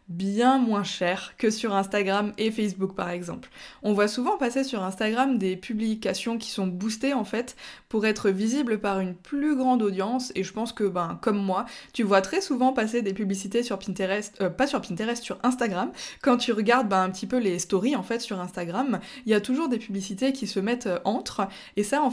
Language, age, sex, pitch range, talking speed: French, 20-39, female, 195-250 Hz, 215 wpm